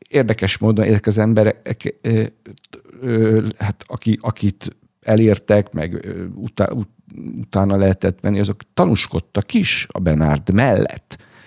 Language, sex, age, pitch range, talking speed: English, male, 60-79, 85-110 Hz, 120 wpm